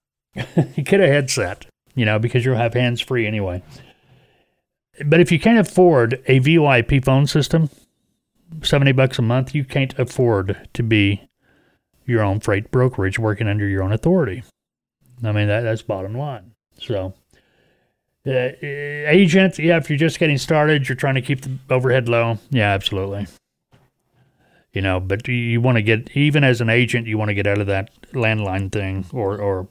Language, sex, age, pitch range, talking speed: English, male, 30-49, 100-135 Hz, 170 wpm